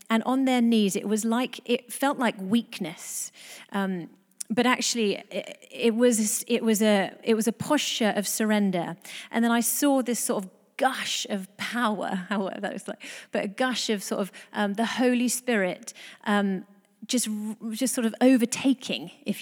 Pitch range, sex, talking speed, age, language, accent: 210-255 Hz, female, 175 wpm, 30-49, English, British